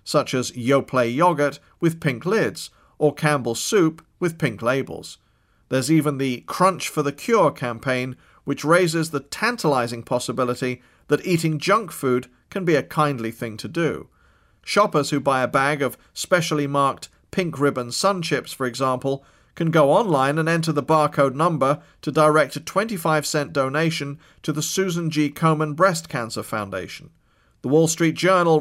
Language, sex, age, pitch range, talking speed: English, male, 40-59, 135-170 Hz, 160 wpm